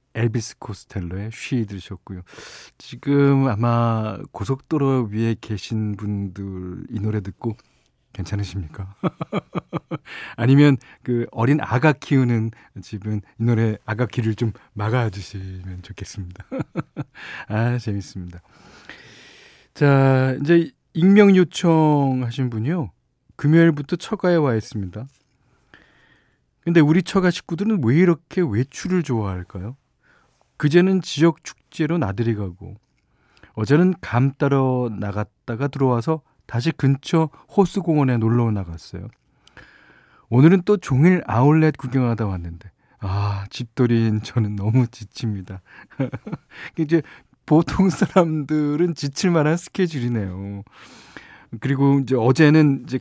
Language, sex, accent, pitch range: Korean, male, native, 105-155 Hz